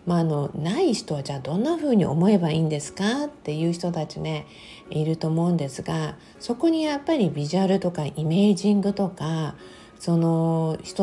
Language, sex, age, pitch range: Japanese, female, 50-69, 160-225 Hz